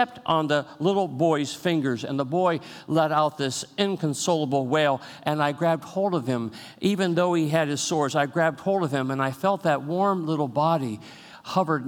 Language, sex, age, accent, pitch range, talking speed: English, male, 50-69, American, 115-155 Hz, 190 wpm